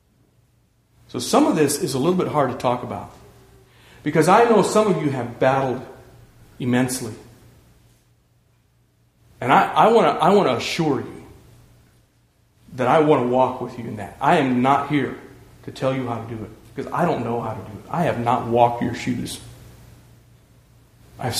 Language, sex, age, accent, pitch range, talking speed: English, male, 40-59, American, 120-145 Hz, 175 wpm